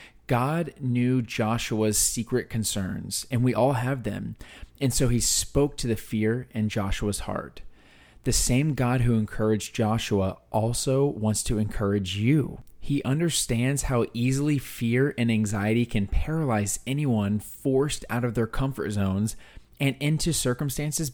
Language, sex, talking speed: English, male, 140 wpm